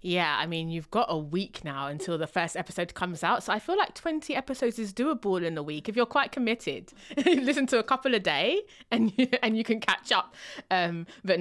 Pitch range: 150-205 Hz